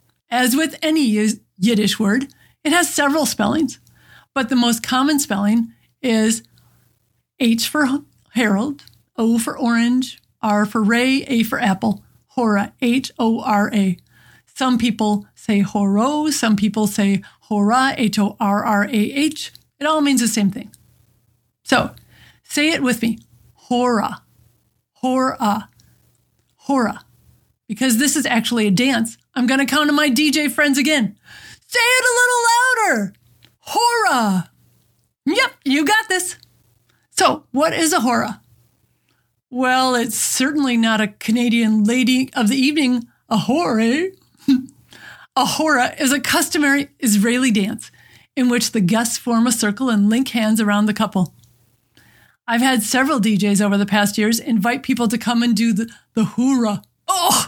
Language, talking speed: English, 145 wpm